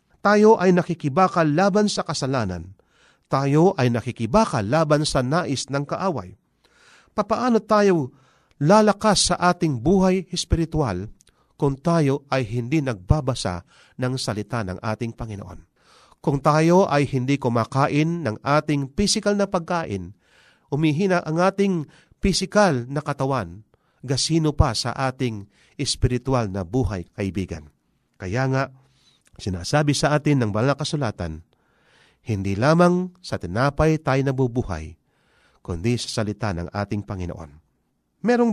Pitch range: 115-170 Hz